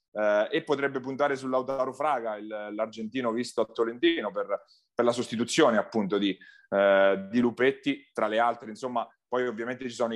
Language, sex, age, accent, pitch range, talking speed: Italian, male, 30-49, native, 115-140 Hz, 155 wpm